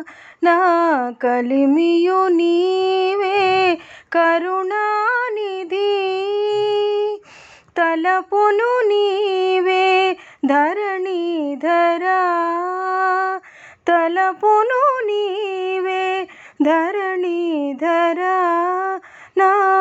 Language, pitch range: Telugu, 250-375 Hz